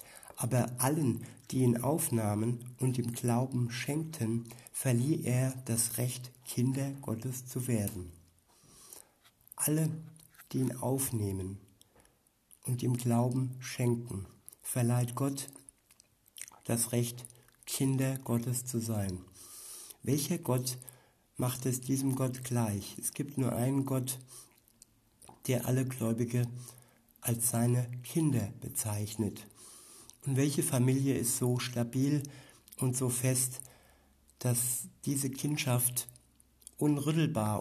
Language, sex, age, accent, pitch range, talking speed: German, male, 60-79, German, 115-130 Hz, 105 wpm